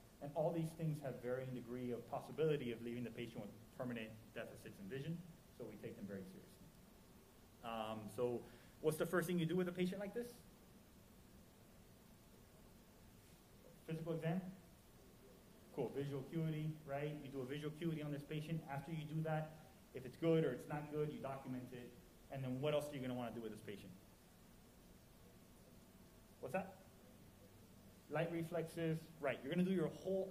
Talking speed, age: 180 wpm, 30-49